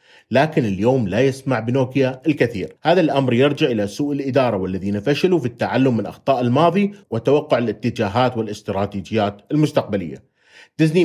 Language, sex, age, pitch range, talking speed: Arabic, male, 30-49, 105-145 Hz, 130 wpm